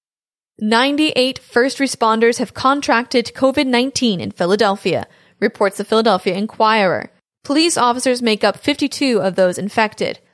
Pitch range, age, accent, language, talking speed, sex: 210-265 Hz, 10-29, American, English, 115 wpm, female